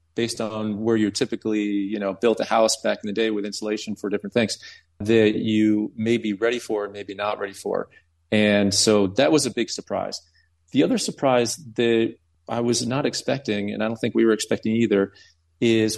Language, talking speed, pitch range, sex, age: English, 200 wpm, 100-115 Hz, male, 40-59